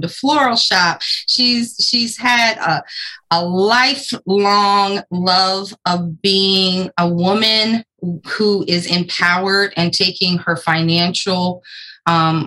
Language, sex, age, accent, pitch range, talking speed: English, female, 20-39, American, 170-205 Hz, 105 wpm